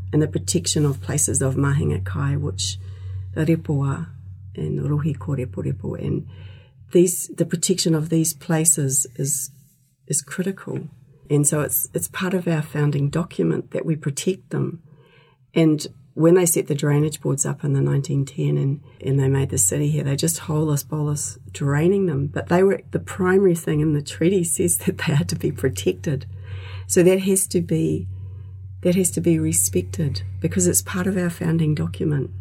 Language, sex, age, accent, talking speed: English, female, 40-59, Australian, 175 wpm